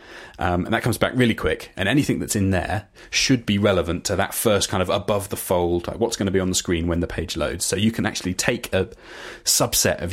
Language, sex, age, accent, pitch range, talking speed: English, male, 30-49, British, 85-105 Hz, 250 wpm